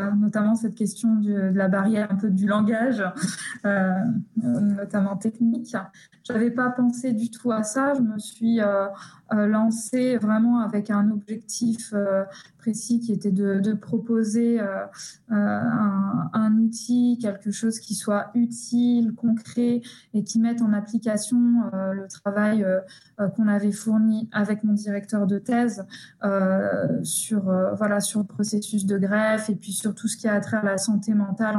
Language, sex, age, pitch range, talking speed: French, female, 20-39, 200-230 Hz, 165 wpm